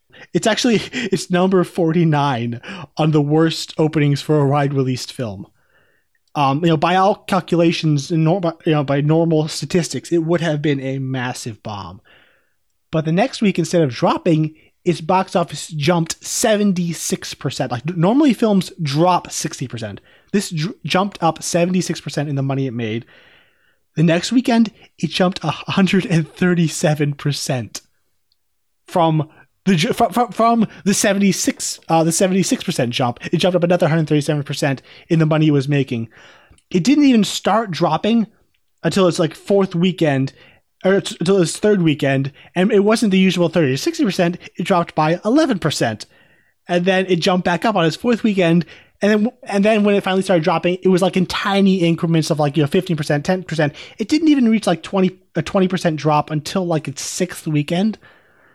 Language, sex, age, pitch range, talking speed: English, male, 20-39, 150-190 Hz, 180 wpm